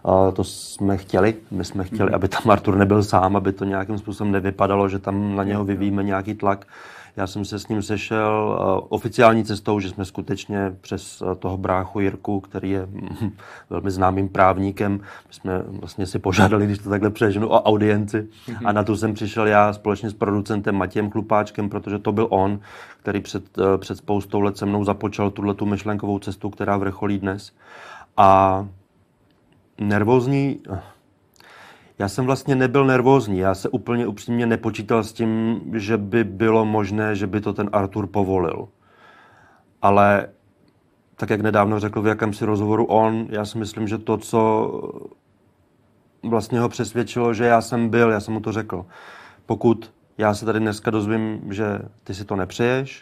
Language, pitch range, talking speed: Czech, 100-110 Hz, 165 wpm